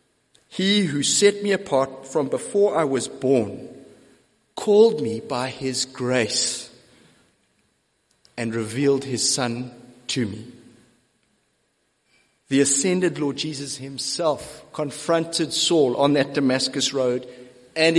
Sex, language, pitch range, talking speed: male, English, 140-200 Hz, 110 wpm